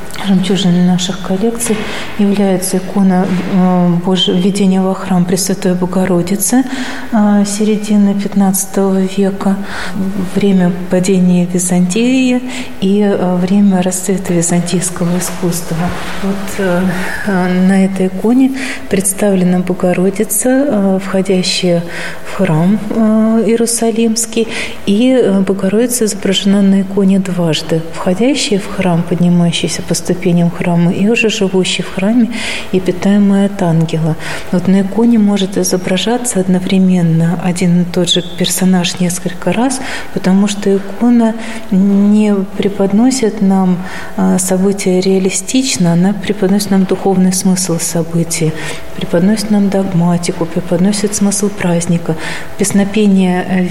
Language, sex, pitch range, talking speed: Russian, female, 180-205 Hz, 95 wpm